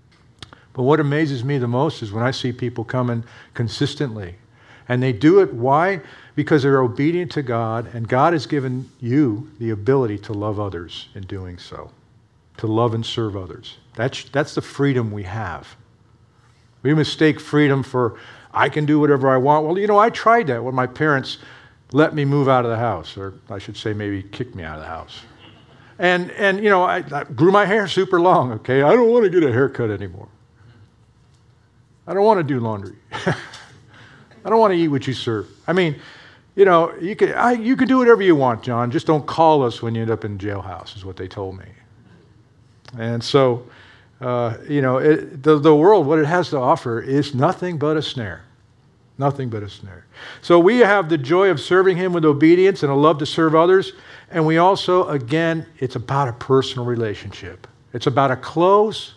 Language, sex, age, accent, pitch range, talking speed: English, male, 50-69, American, 115-155 Hz, 200 wpm